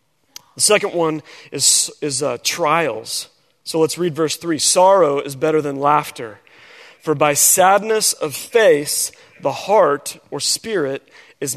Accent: American